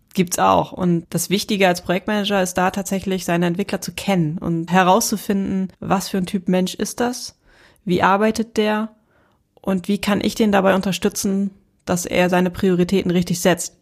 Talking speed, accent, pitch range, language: 170 wpm, German, 185-205 Hz, German